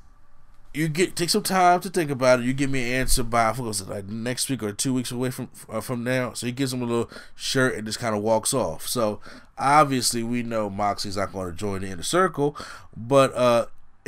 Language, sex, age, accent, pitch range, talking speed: English, male, 20-39, American, 110-140 Hz, 235 wpm